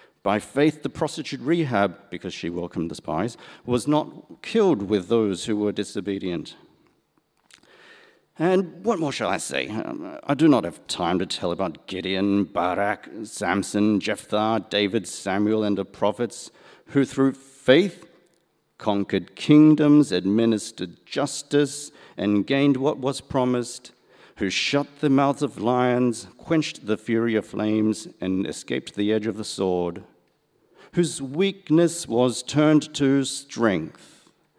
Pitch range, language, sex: 100-140 Hz, English, male